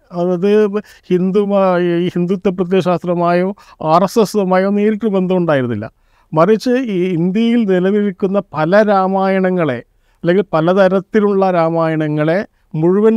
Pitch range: 170-205 Hz